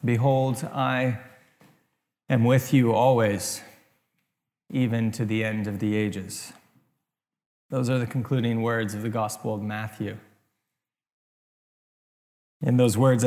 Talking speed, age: 120 wpm, 20-39